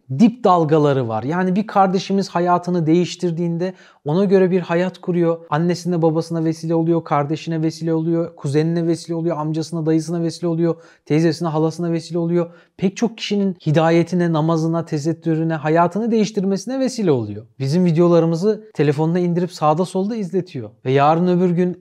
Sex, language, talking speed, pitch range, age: male, Turkish, 145 wpm, 150-185 Hz, 30-49